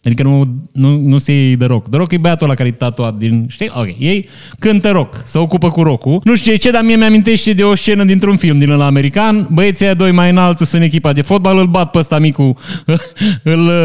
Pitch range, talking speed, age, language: 135-180 Hz, 225 wpm, 20-39, Romanian